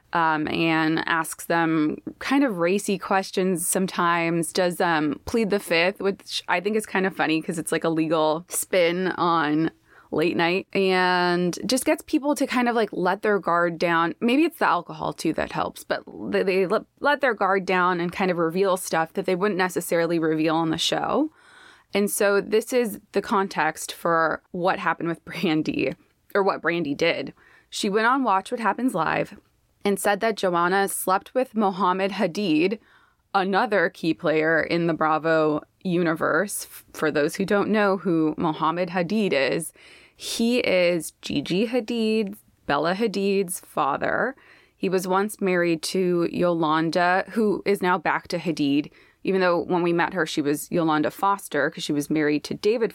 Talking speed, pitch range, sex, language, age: 170 wpm, 165-205 Hz, female, English, 20-39